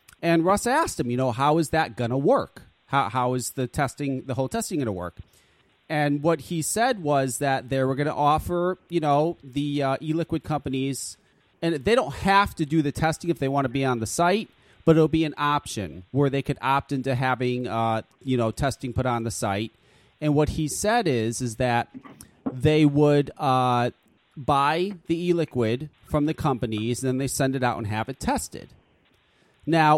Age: 30-49